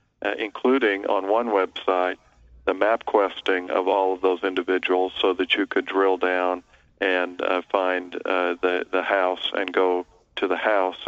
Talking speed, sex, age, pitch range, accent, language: 170 wpm, male, 40-59, 95-100 Hz, American, English